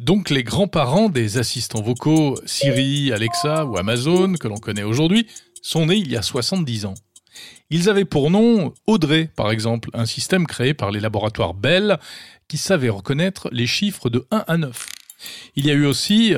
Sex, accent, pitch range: male, French, 115-175 Hz